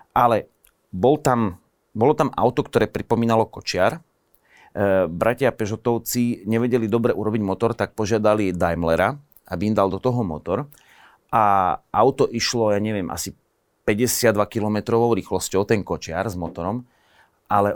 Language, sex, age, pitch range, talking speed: Slovak, male, 30-49, 100-120 Hz, 130 wpm